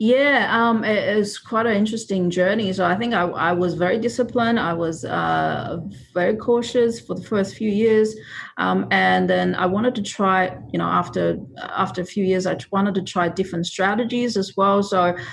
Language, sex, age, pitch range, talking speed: English, female, 40-59, 170-215 Hz, 190 wpm